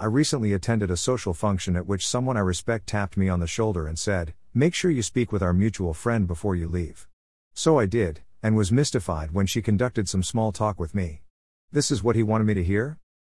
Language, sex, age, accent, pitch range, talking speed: English, male, 50-69, American, 90-115 Hz, 230 wpm